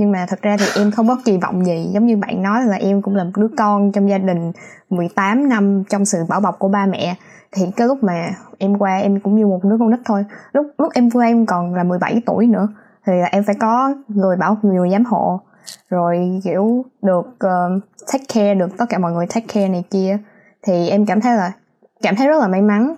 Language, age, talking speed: Vietnamese, 20-39, 245 wpm